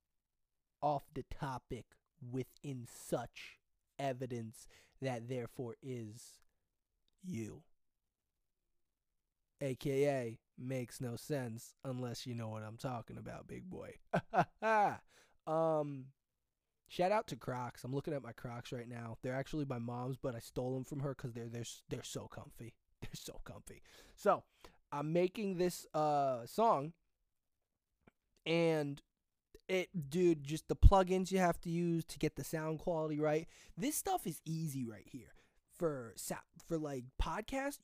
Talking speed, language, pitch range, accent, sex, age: 135 wpm, English, 125-195 Hz, American, male, 20-39